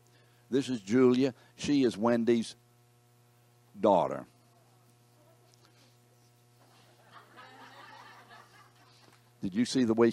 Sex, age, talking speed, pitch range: male, 60-79, 70 wpm, 105-120 Hz